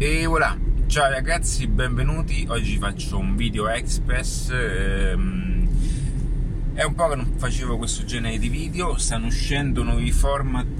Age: 30-49